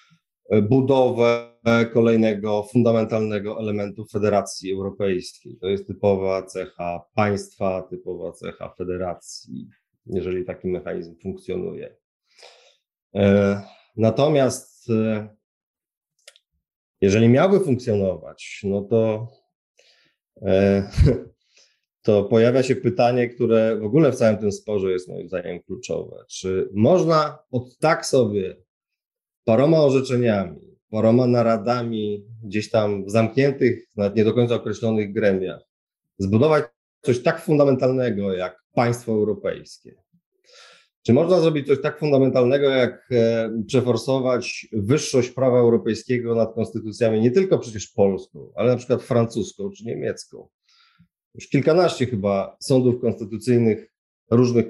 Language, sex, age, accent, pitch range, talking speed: Polish, male, 30-49, native, 105-125 Hz, 105 wpm